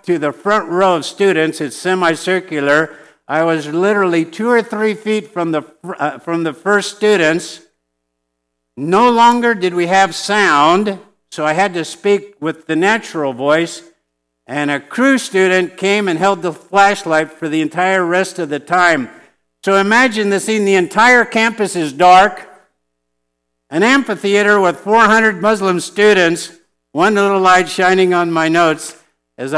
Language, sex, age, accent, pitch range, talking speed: English, male, 60-79, American, 155-205 Hz, 155 wpm